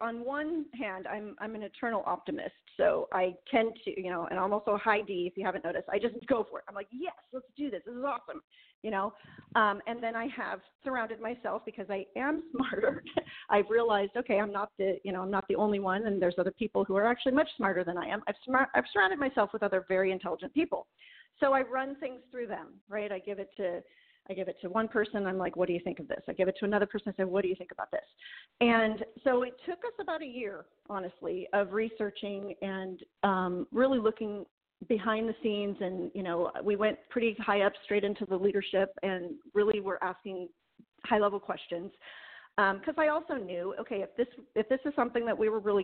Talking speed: 230 wpm